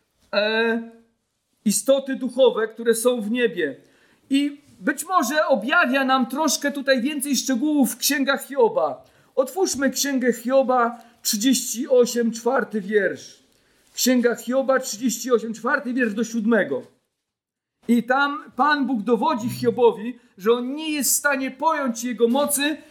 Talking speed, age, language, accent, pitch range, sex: 120 wpm, 50-69, Polish, native, 225-270 Hz, male